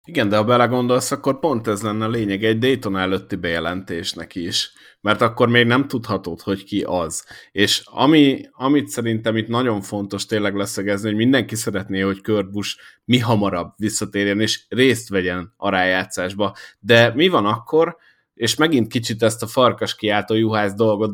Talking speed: 165 wpm